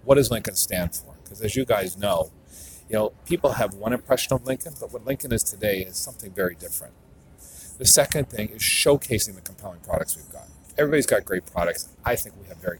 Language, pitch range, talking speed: French, 90-120 Hz, 215 wpm